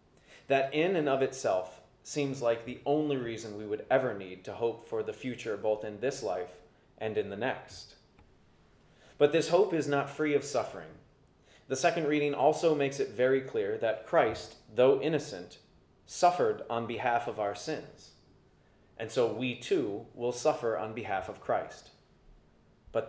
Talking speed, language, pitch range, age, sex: 165 wpm, English, 115-150 Hz, 30-49, male